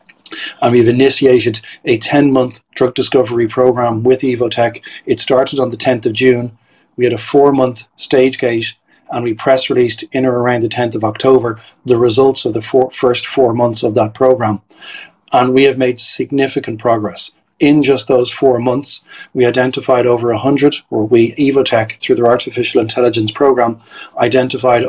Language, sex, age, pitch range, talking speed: English, male, 40-59, 115-130 Hz, 165 wpm